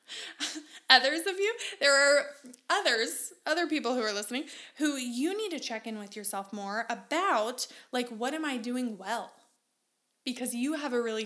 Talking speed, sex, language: 170 wpm, female, English